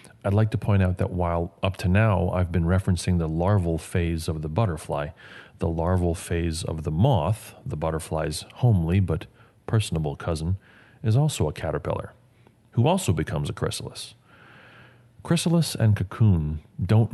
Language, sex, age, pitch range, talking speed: English, male, 40-59, 85-115 Hz, 155 wpm